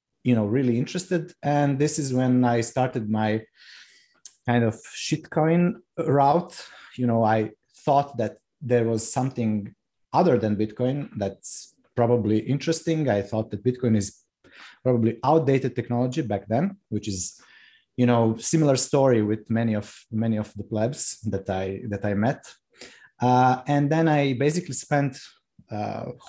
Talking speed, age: 145 wpm, 30-49